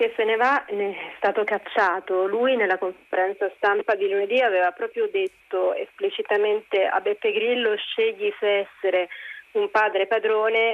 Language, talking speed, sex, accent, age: Italian, 150 wpm, female, native, 30-49